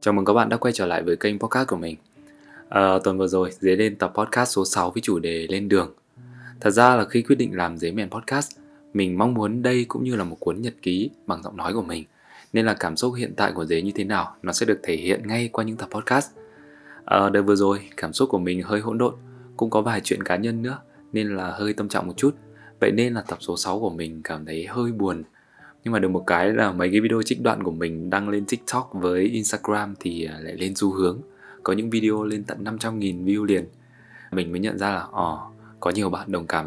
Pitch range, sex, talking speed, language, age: 95-115 Hz, male, 250 wpm, Vietnamese, 20-39